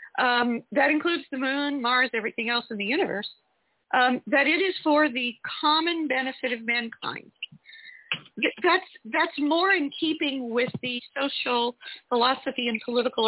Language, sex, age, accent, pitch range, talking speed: English, female, 50-69, American, 240-300 Hz, 145 wpm